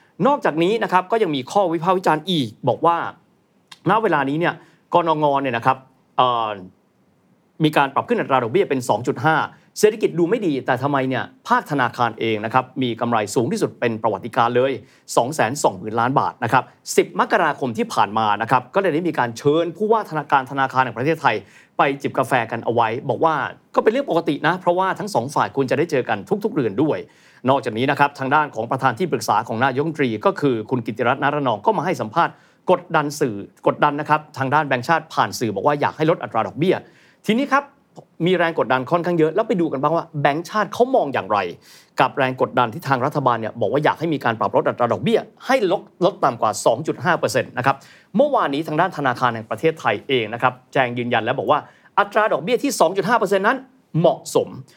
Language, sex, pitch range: Thai, male, 130-185 Hz